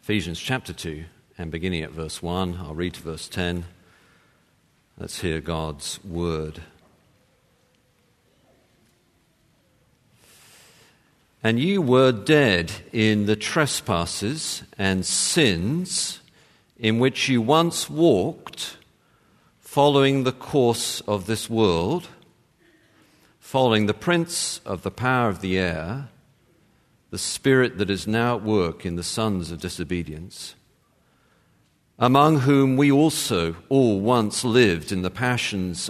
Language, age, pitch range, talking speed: English, 50-69, 90-130 Hz, 115 wpm